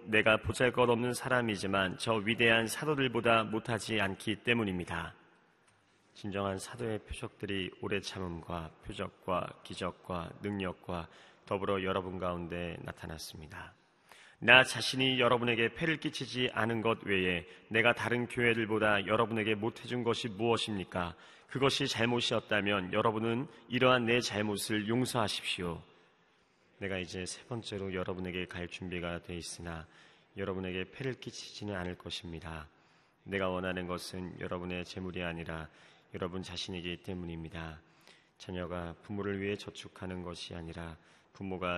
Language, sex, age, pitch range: Korean, male, 30-49, 90-115 Hz